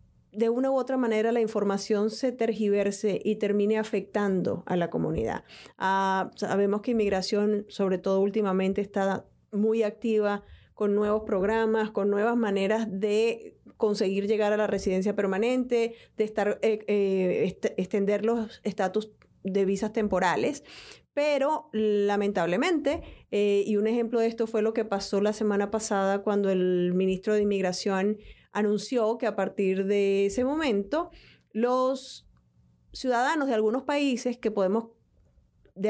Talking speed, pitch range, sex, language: 135 wpm, 200-230 Hz, female, Spanish